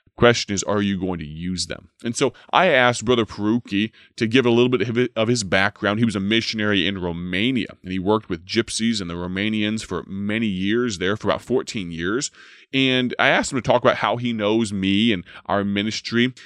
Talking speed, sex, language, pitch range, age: 210 wpm, male, English, 95-120 Hz, 30-49